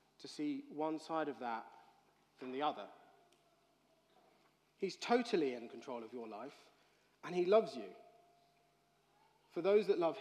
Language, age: English, 30-49